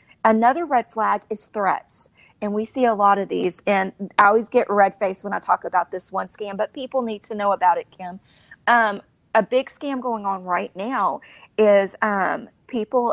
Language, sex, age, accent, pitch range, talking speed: English, female, 30-49, American, 195-245 Hz, 200 wpm